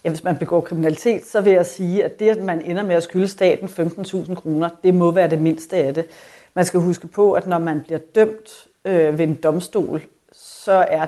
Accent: native